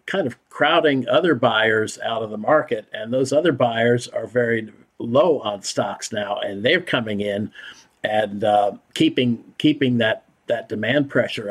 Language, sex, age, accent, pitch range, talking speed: English, male, 50-69, American, 115-140 Hz, 160 wpm